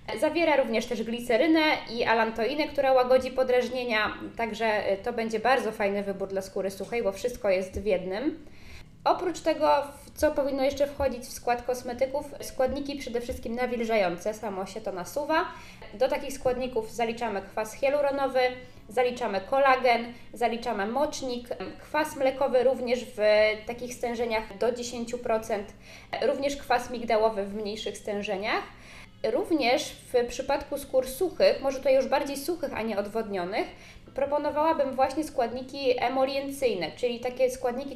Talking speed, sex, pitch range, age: 135 wpm, female, 225-275 Hz, 20-39